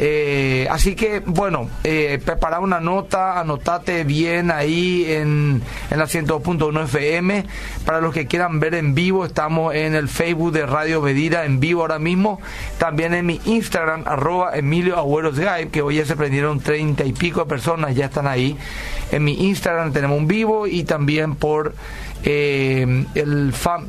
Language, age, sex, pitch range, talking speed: Spanish, 40-59, male, 145-170 Hz, 165 wpm